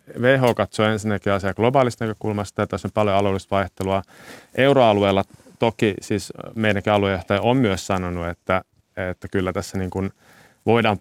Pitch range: 95-110 Hz